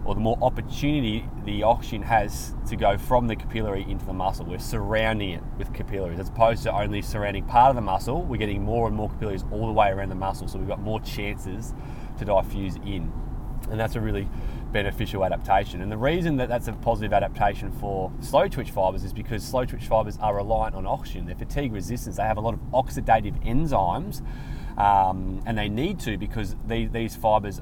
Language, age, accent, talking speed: English, 20-39, Australian, 200 wpm